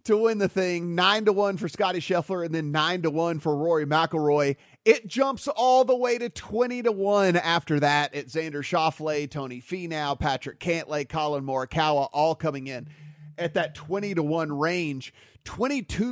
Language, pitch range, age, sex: English, 145-180 Hz, 30-49, male